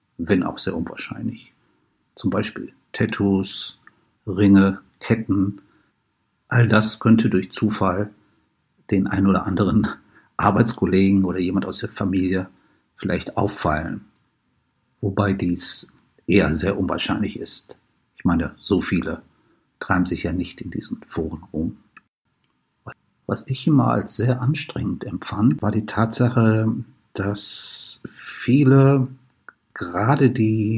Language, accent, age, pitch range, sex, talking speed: German, German, 60-79, 100-115 Hz, male, 115 wpm